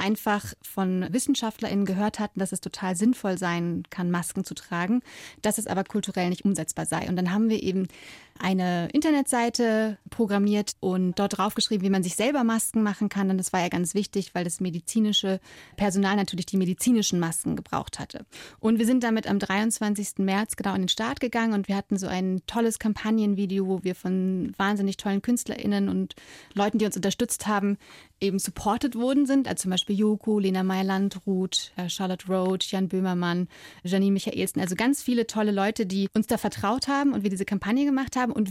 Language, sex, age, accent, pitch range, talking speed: German, female, 30-49, German, 190-225 Hz, 185 wpm